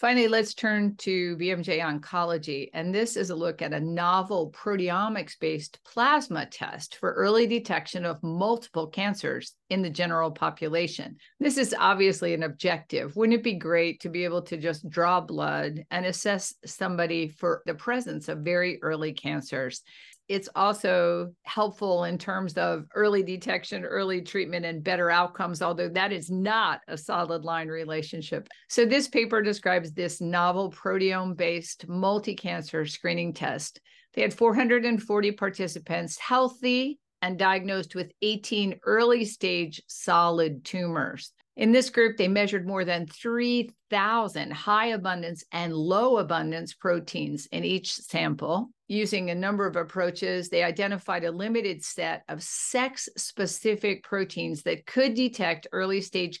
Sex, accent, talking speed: female, American, 140 wpm